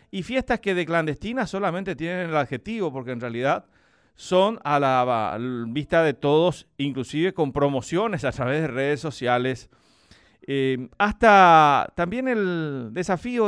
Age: 40-59